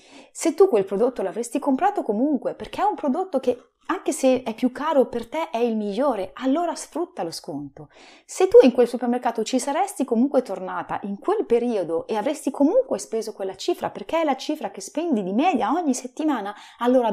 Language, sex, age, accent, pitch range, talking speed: Italian, female, 30-49, native, 200-305 Hz, 195 wpm